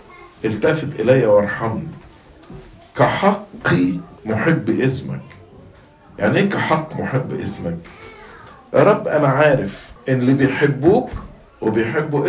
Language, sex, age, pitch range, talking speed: English, male, 50-69, 125-165 Hz, 90 wpm